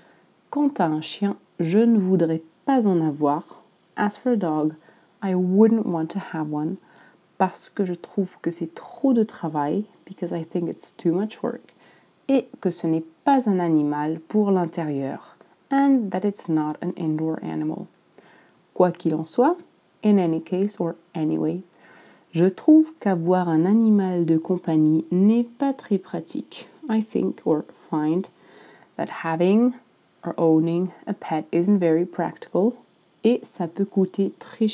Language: French